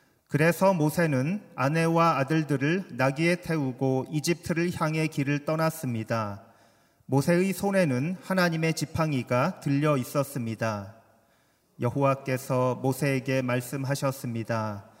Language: Korean